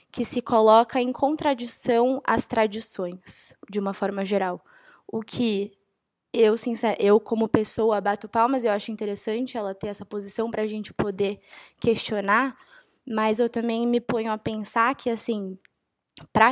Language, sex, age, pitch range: Portuguese, female, 10-29, 195-240 Hz